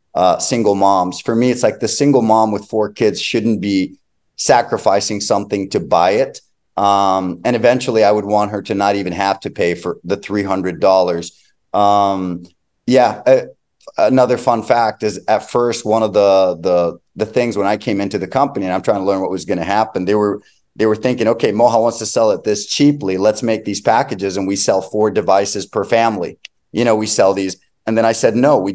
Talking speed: 215 wpm